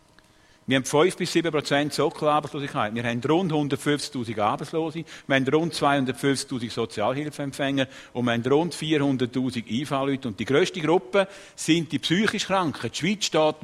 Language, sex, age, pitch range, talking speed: German, male, 50-69, 115-155 Hz, 145 wpm